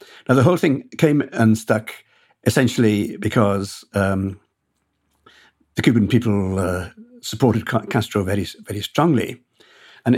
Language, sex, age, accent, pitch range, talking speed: English, male, 60-79, British, 100-120 Hz, 120 wpm